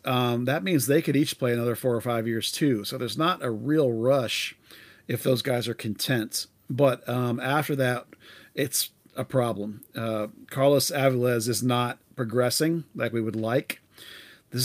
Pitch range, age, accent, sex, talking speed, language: 115-130 Hz, 40-59, American, male, 170 wpm, English